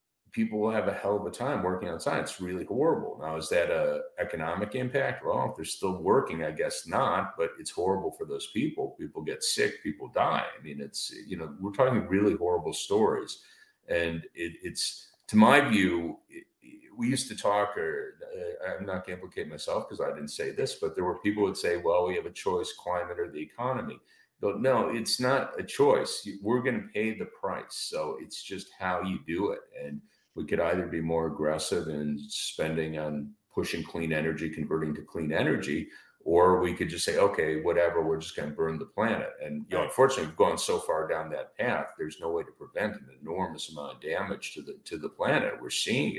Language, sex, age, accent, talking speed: English, male, 50-69, American, 215 wpm